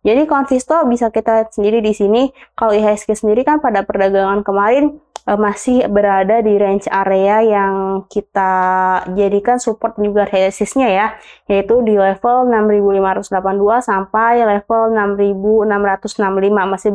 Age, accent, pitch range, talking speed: 20-39, native, 200-230 Hz, 130 wpm